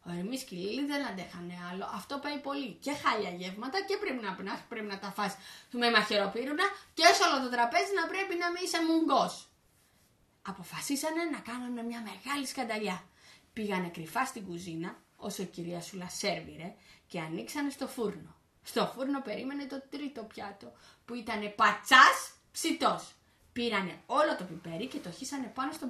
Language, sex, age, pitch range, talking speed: Greek, female, 20-39, 210-325 Hz, 160 wpm